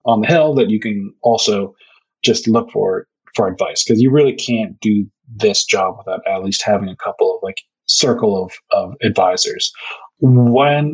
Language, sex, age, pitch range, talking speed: English, male, 30-49, 115-150 Hz, 175 wpm